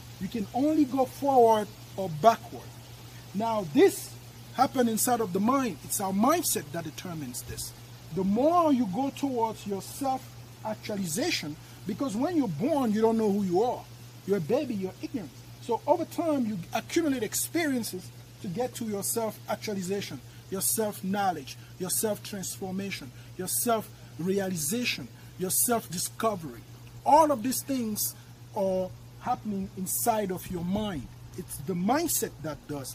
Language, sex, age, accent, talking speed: English, male, 50-69, Nigerian, 140 wpm